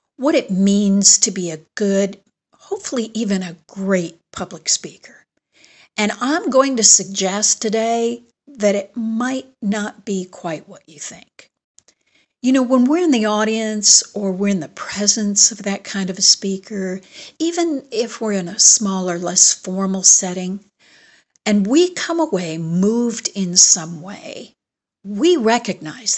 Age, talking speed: 60-79, 150 wpm